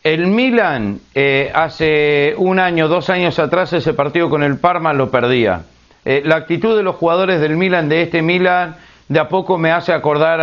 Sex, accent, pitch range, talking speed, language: male, Argentinian, 155-190 Hz, 190 wpm, Spanish